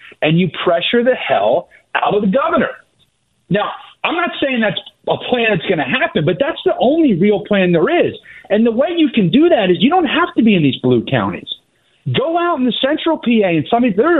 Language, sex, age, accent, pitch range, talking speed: English, male, 40-59, American, 155-245 Hz, 225 wpm